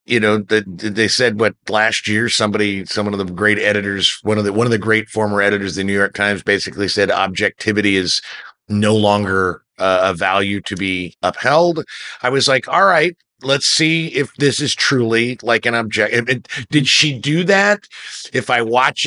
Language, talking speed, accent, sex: English, 190 wpm, American, male